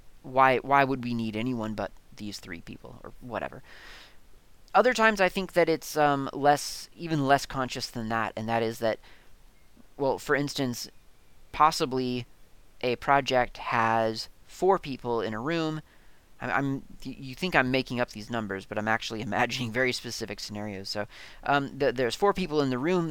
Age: 30-49